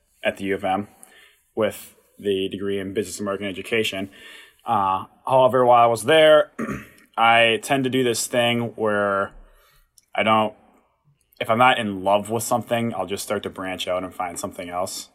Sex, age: male, 20-39